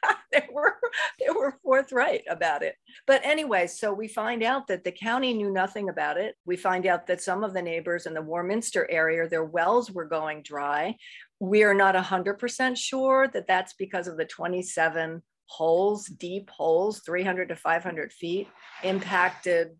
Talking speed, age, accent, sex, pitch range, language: 165 wpm, 50-69, American, female, 165-210 Hz, English